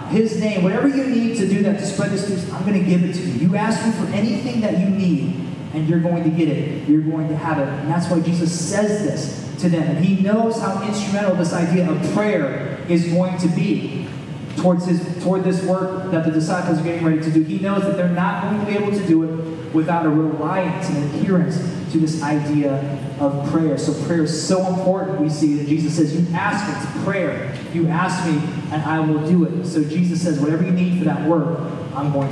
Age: 30-49